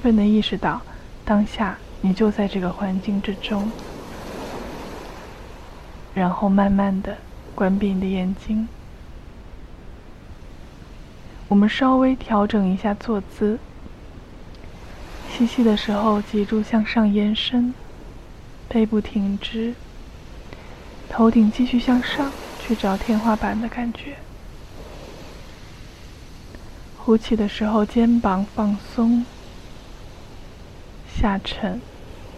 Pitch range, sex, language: 185-225 Hz, female, Chinese